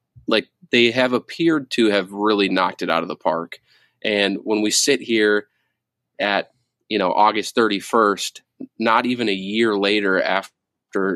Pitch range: 100-120 Hz